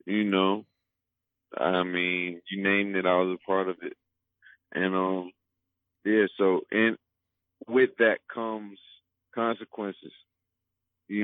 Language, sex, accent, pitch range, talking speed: English, male, American, 90-105 Hz, 125 wpm